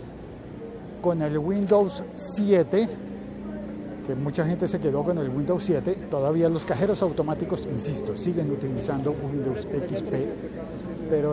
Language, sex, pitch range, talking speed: Spanish, male, 135-185 Hz, 120 wpm